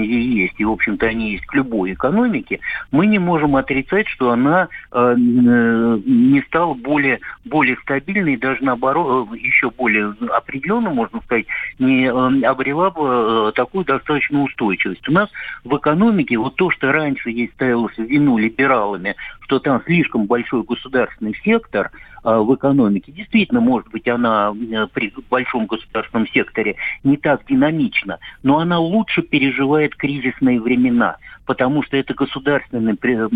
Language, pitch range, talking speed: Russian, 120-160 Hz, 145 wpm